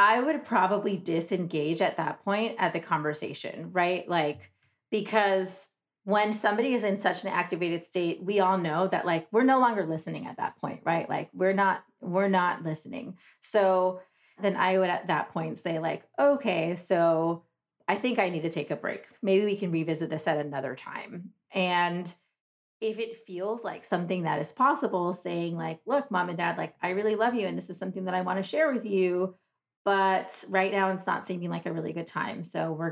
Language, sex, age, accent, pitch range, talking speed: English, female, 30-49, American, 165-200 Hz, 200 wpm